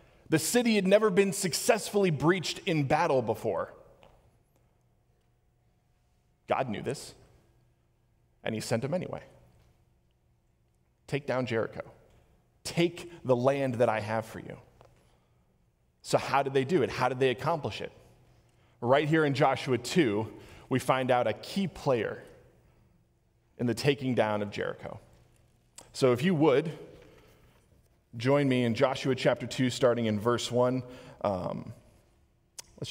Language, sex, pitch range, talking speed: English, male, 120-160 Hz, 130 wpm